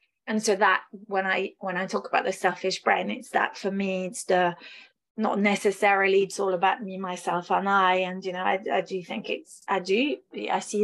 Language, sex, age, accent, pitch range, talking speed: English, female, 30-49, British, 190-215 Hz, 215 wpm